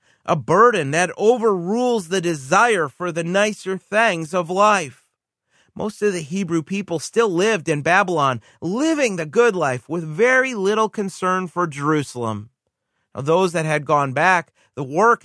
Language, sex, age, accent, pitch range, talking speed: English, male, 30-49, American, 150-210 Hz, 155 wpm